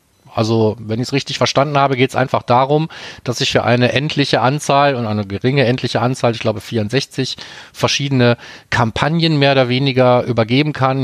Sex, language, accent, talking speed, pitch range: male, German, German, 175 wpm, 115-140 Hz